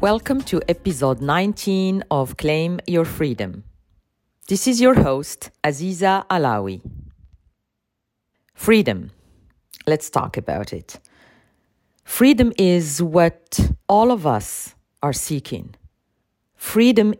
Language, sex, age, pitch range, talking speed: English, female, 40-59, 145-220 Hz, 100 wpm